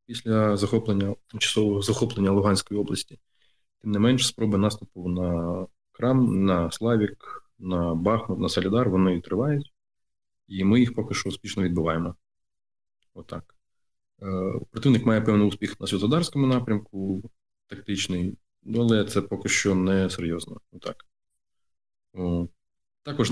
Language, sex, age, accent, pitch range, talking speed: Ukrainian, male, 20-39, native, 95-110 Hz, 115 wpm